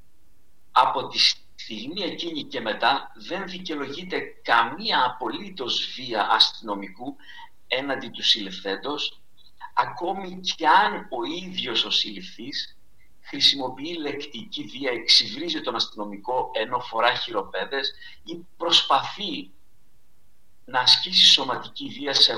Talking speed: 100 wpm